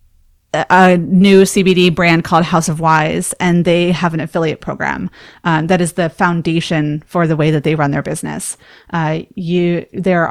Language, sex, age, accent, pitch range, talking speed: English, female, 30-49, American, 160-185 Hz, 175 wpm